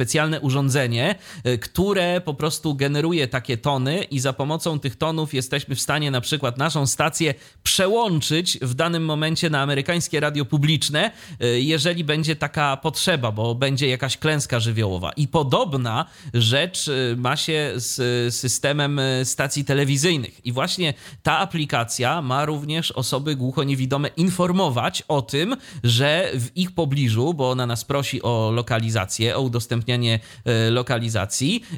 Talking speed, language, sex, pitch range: 130 wpm, Polish, male, 120-155 Hz